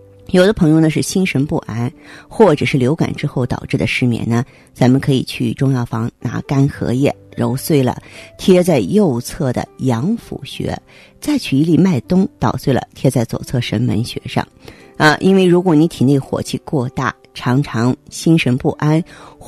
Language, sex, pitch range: Chinese, female, 125-170 Hz